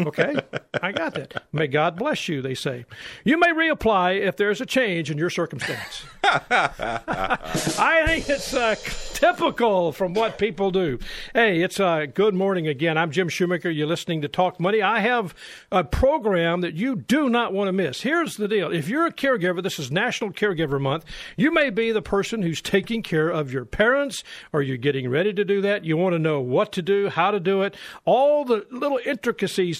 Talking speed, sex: 205 wpm, male